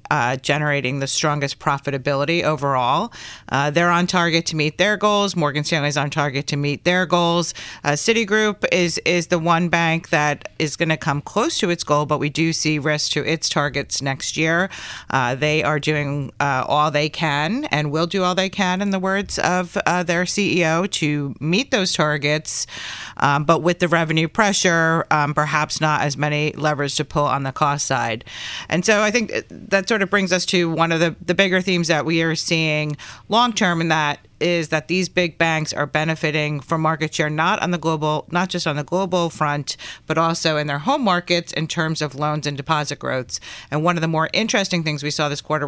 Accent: American